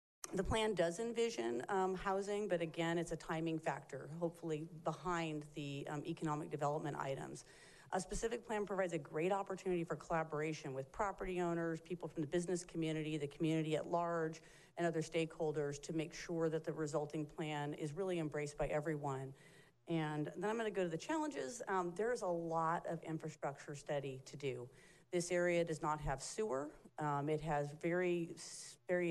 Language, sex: English, female